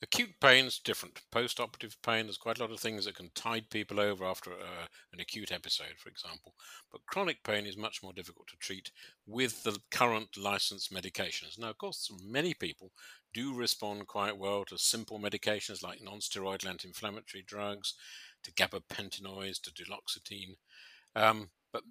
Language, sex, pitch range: English, male, 95-115 Hz